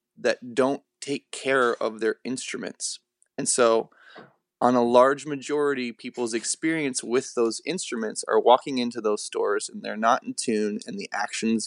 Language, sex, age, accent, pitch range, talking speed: English, male, 20-39, American, 115-130 Hz, 160 wpm